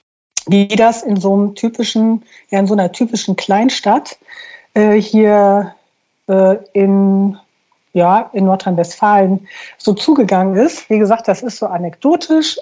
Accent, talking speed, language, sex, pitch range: German, 110 wpm, German, female, 185-225 Hz